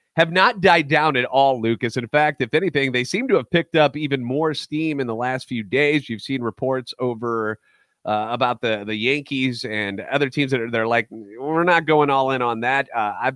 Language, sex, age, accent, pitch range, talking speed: English, male, 30-49, American, 110-135 Hz, 225 wpm